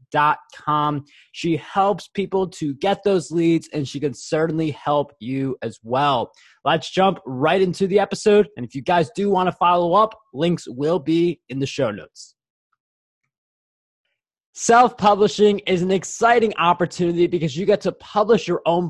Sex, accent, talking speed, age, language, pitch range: male, American, 160 wpm, 20-39, English, 145-195 Hz